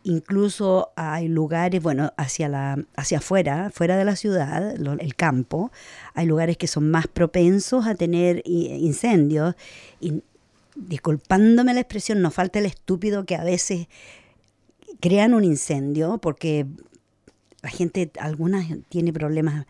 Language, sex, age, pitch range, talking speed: English, female, 50-69, 155-195 Hz, 135 wpm